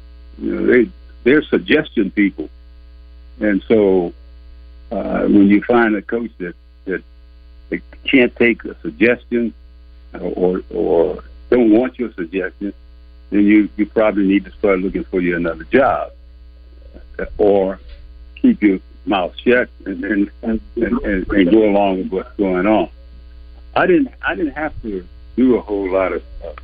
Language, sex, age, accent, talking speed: English, male, 60-79, American, 150 wpm